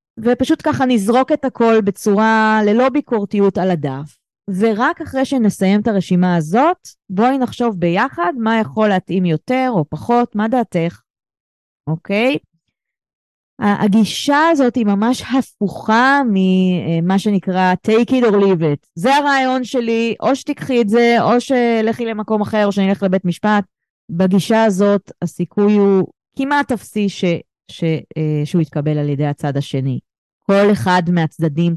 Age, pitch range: 30-49, 175-235 Hz